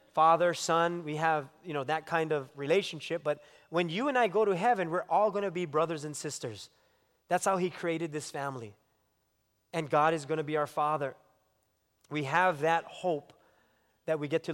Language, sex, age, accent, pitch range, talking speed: English, male, 30-49, American, 155-210 Hz, 200 wpm